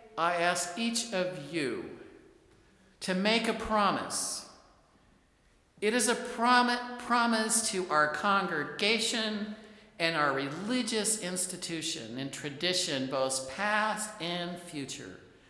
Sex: male